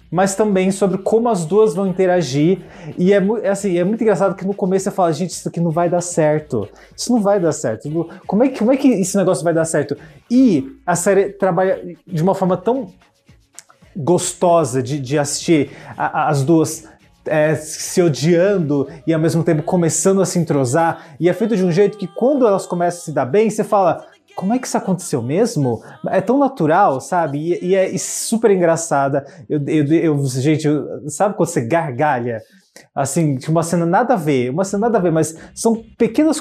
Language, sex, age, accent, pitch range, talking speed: Portuguese, male, 20-39, Brazilian, 155-195 Hz, 190 wpm